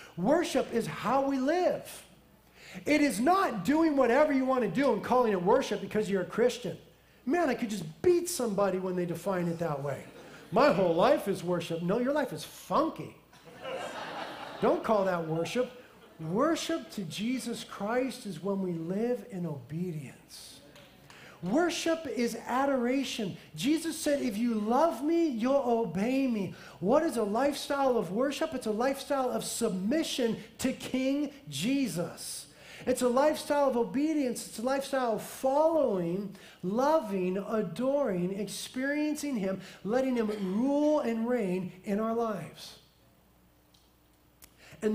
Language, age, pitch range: English, 40-59, 185-270 Hz